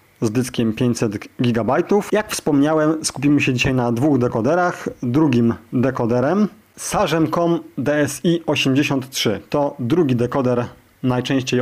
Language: Polish